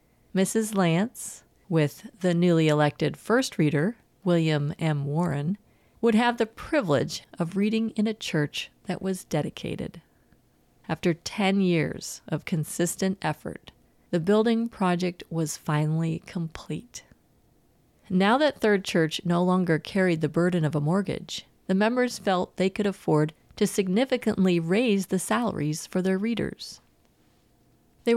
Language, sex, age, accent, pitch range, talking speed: English, female, 40-59, American, 160-205 Hz, 130 wpm